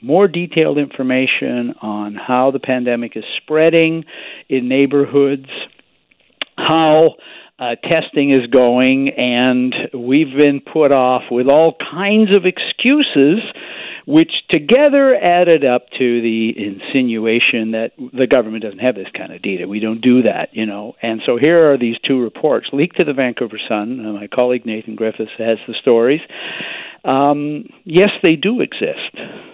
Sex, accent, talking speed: male, American, 150 wpm